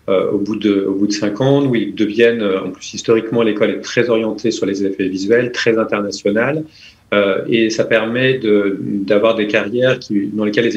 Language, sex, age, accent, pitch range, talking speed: French, male, 40-59, French, 100-125 Hz, 200 wpm